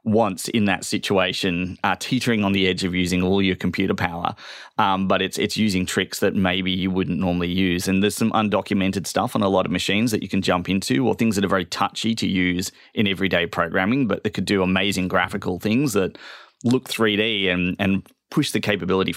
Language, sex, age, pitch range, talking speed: English, male, 30-49, 90-100 Hz, 215 wpm